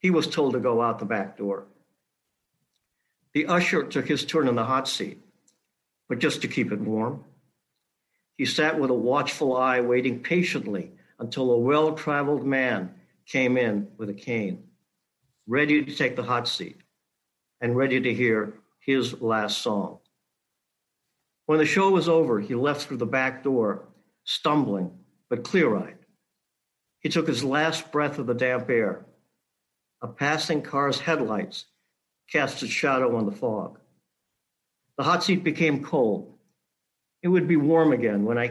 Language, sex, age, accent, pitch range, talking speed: English, male, 60-79, American, 115-150 Hz, 155 wpm